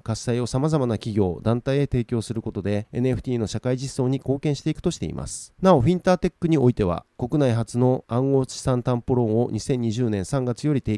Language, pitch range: Japanese, 110-140 Hz